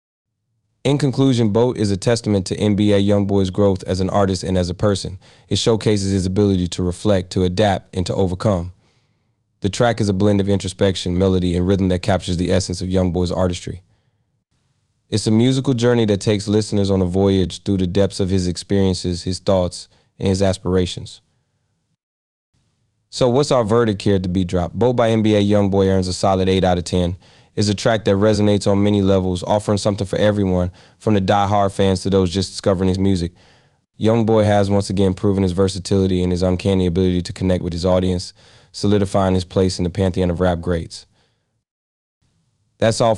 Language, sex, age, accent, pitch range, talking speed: English, male, 30-49, American, 90-105 Hz, 190 wpm